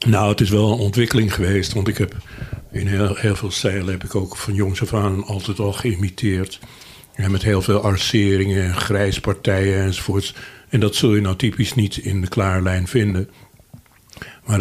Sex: male